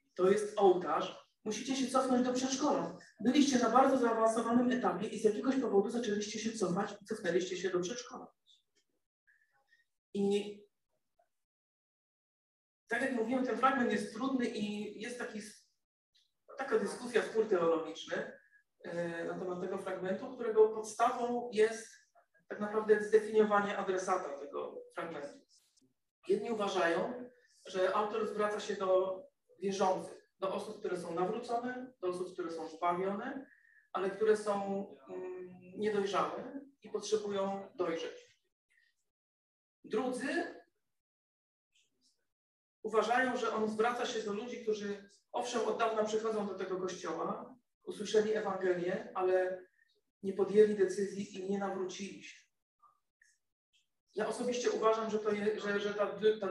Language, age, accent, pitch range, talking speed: Polish, 40-59, native, 195-245 Hz, 125 wpm